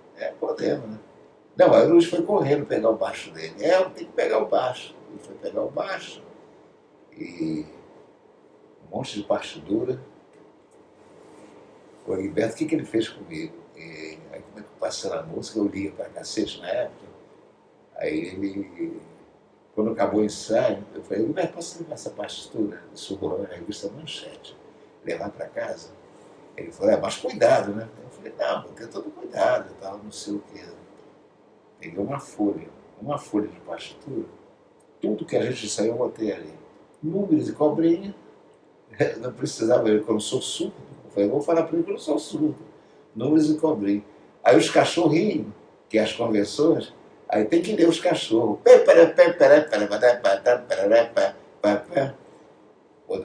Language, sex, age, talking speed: Portuguese, male, 60-79, 160 wpm